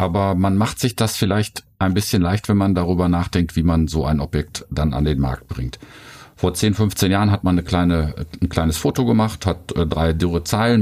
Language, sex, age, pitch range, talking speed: German, male, 50-69, 75-95 Hz, 215 wpm